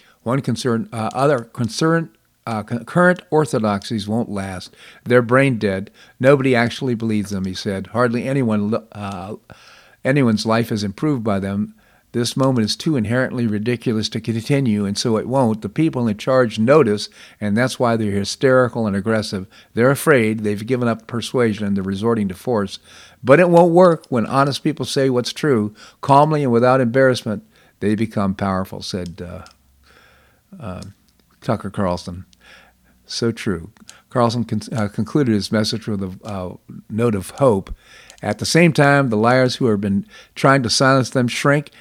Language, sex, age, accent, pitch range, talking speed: English, male, 50-69, American, 105-130 Hz, 165 wpm